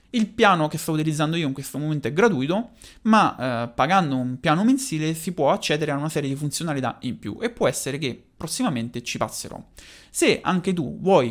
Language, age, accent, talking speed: Italian, 30-49, native, 200 wpm